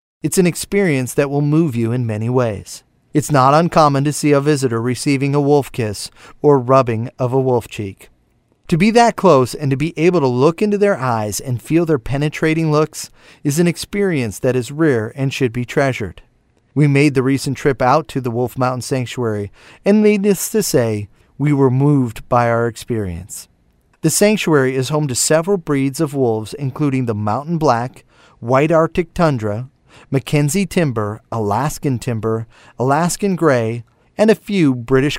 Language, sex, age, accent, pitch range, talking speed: English, male, 30-49, American, 120-160 Hz, 175 wpm